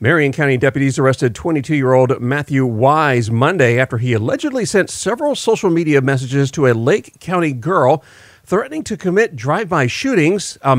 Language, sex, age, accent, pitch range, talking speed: English, male, 40-59, American, 120-160 Hz, 150 wpm